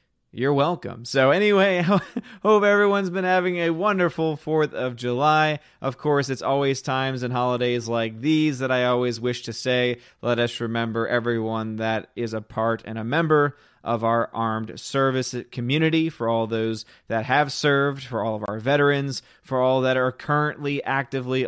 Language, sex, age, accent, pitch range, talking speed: English, male, 30-49, American, 115-145 Hz, 170 wpm